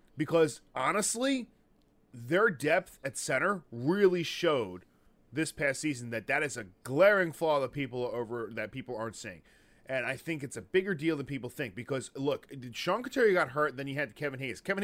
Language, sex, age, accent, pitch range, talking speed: English, male, 30-49, American, 135-175 Hz, 195 wpm